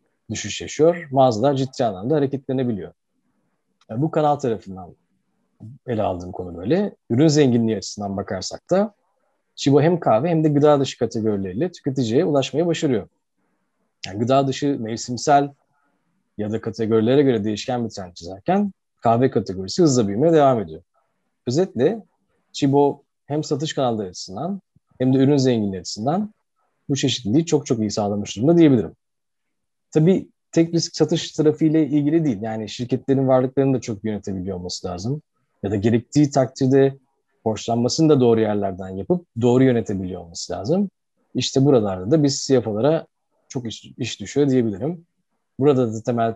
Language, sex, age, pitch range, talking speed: Turkish, male, 30-49, 110-150 Hz, 135 wpm